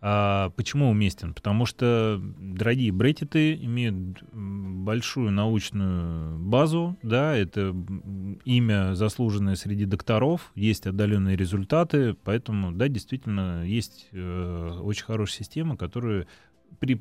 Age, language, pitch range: 30-49, Russian, 95-125 Hz